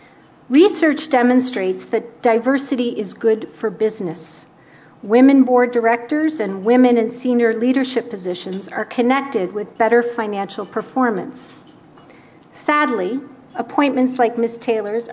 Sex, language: female, English